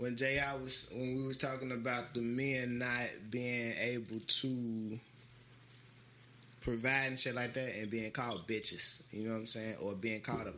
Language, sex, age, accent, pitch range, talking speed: English, male, 20-39, American, 120-145 Hz, 175 wpm